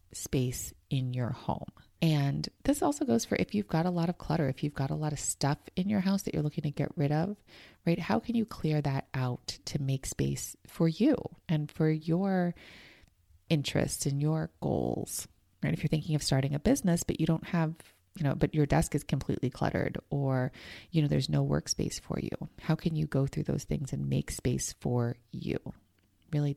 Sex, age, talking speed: female, 30-49, 210 wpm